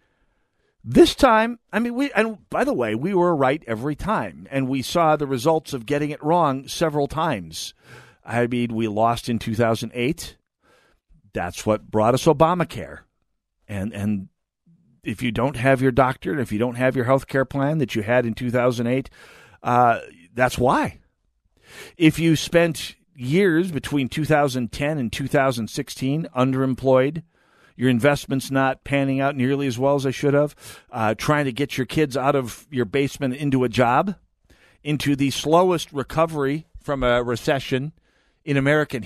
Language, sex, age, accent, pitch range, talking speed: English, male, 50-69, American, 120-150 Hz, 160 wpm